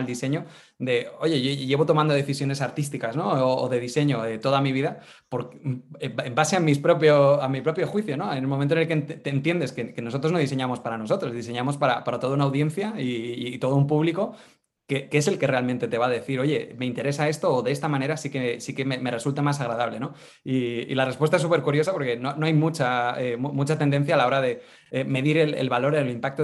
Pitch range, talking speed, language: 125-150 Hz, 245 wpm, Spanish